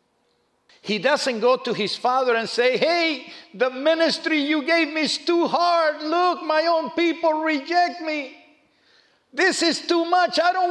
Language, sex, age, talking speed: English, male, 50-69, 165 wpm